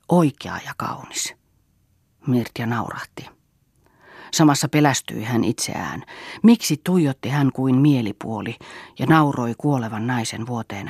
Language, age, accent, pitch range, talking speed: Finnish, 40-59, native, 115-145 Hz, 105 wpm